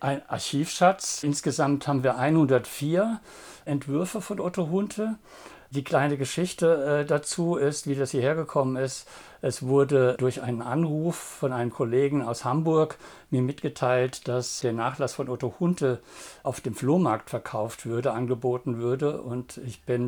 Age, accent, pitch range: 60-79, German, 125-145 Hz